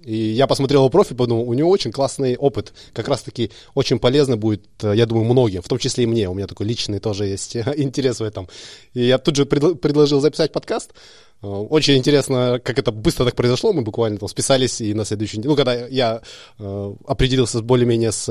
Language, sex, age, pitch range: Russian, male, 20-39, 110-145 Hz